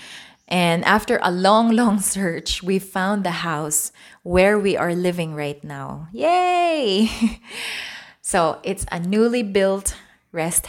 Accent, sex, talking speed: Filipino, female, 130 wpm